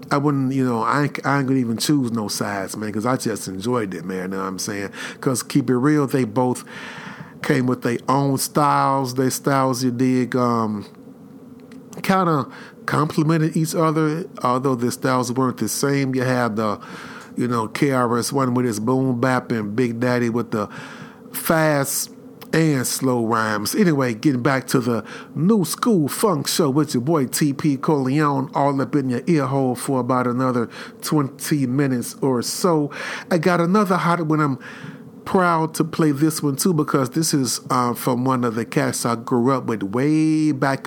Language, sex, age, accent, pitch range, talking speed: English, male, 40-59, American, 120-155 Hz, 185 wpm